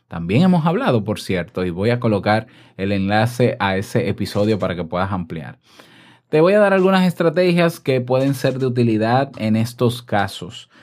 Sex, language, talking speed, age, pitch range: male, Spanish, 175 wpm, 20-39, 110-150 Hz